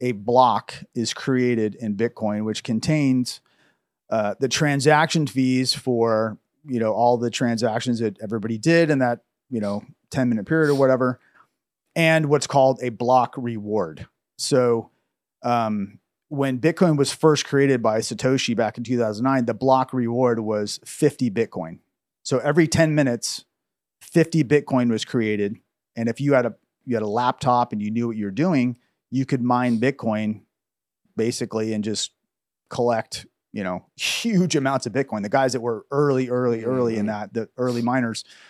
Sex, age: male, 30-49